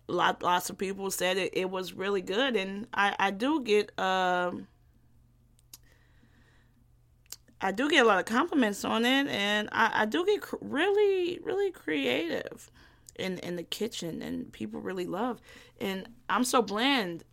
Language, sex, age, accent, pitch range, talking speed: English, female, 20-39, American, 180-240 Hz, 155 wpm